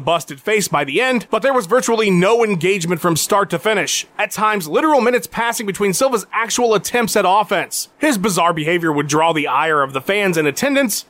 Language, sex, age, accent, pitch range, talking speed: English, male, 30-49, American, 175-245 Hz, 205 wpm